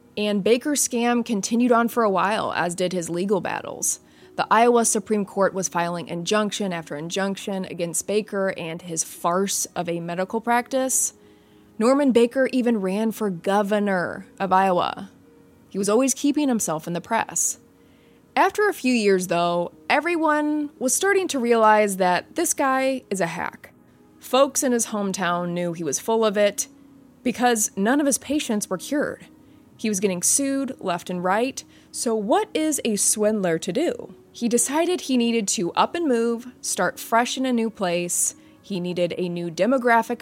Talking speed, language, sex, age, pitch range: 170 wpm, English, female, 20-39, 180-245 Hz